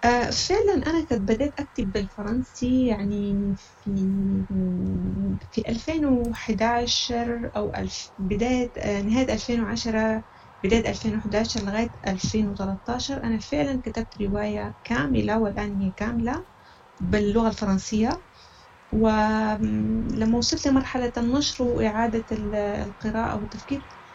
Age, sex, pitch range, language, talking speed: 30-49, female, 195-240 Hz, Arabic, 90 wpm